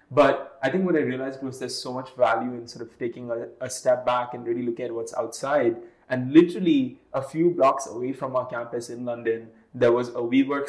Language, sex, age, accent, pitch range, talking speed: English, male, 20-39, Indian, 120-135 Hz, 225 wpm